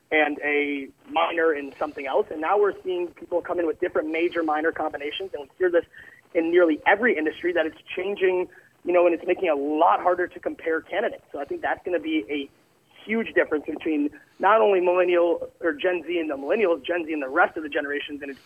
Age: 30-49